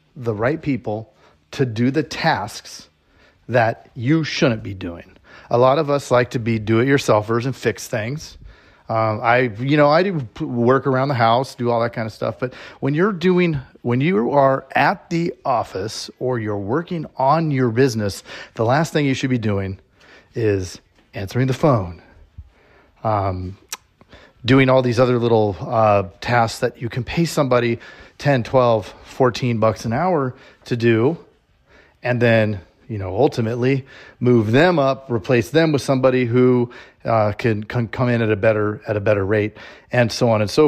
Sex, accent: male, American